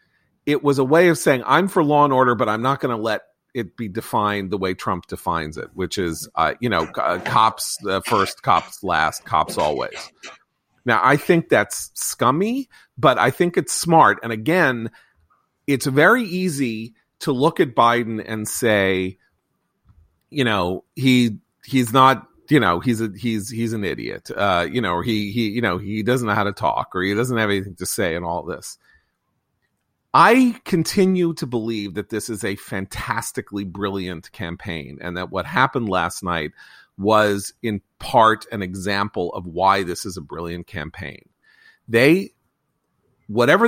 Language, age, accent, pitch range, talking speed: English, 40-59, American, 100-135 Hz, 175 wpm